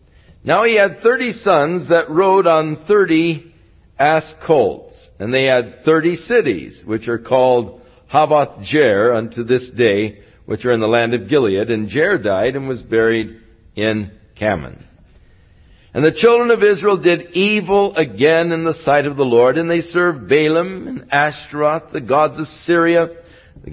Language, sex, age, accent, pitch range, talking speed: English, male, 60-79, American, 115-170 Hz, 155 wpm